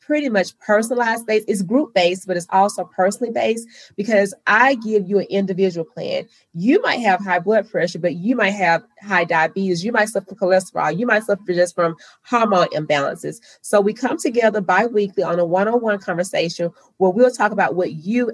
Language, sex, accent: English, female, American